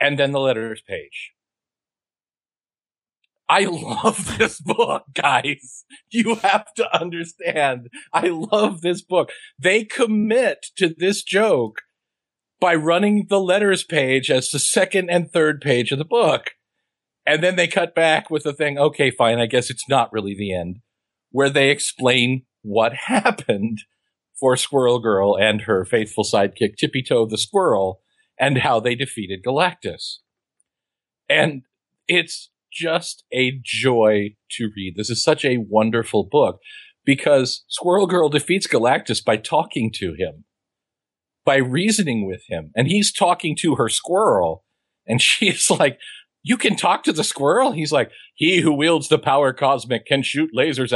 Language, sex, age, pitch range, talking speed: English, male, 50-69, 115-170 Hz, 150 wpm